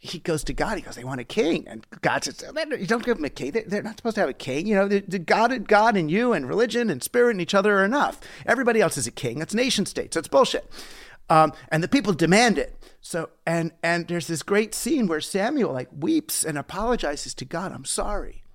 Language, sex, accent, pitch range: English, male, American, 170-230 Hz